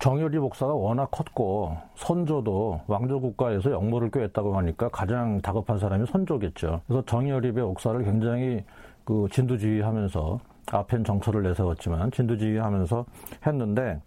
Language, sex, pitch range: Korean, male, 110-145 Hz